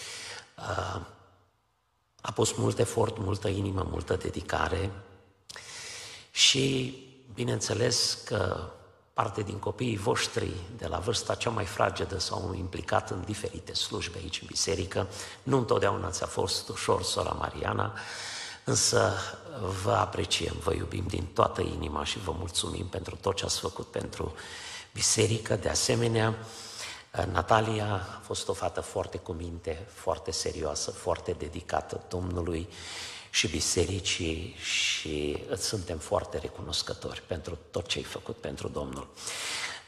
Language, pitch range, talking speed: Romanian, 90-115 Hz, 125 wpm